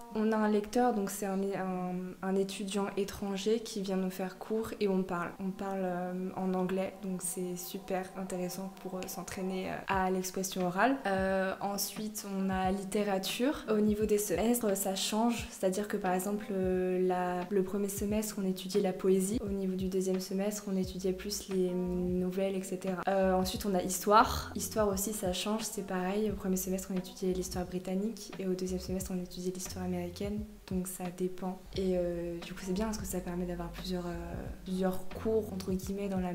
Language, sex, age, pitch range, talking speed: French, female, 20-39, 185-205 Hz, 185 wpm